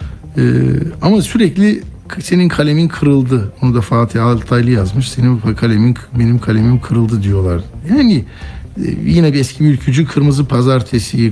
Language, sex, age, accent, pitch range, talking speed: Turkish, male, 60-79, native, 110-145 Hz, 135 wpm